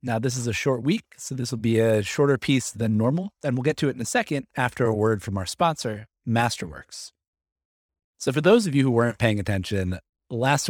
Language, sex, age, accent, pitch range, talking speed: English, male, 30-49, American, 95-130 Hz, 225 wpm